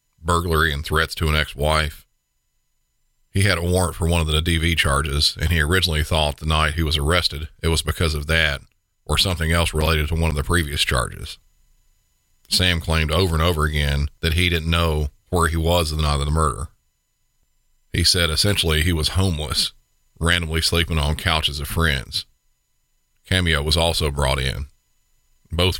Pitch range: 75-85 Hz